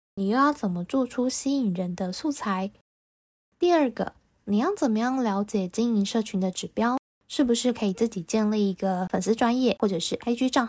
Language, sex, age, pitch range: Chinese, female, 10-29, 200-250 Hz